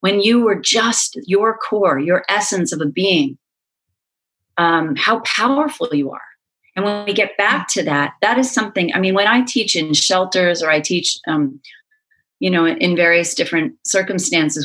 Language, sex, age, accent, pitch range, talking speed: English, female, 40-59, American, 165-225 Hz, 175 wpm